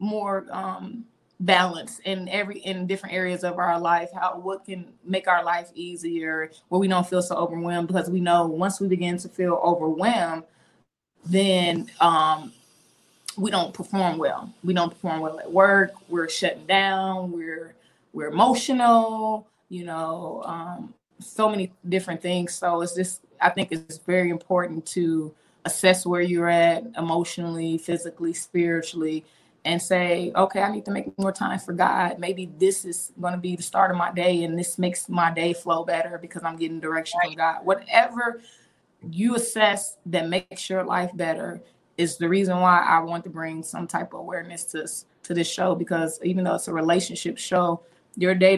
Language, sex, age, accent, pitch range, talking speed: English, female, 20-39, American, 170-190 Hz, 175 wpm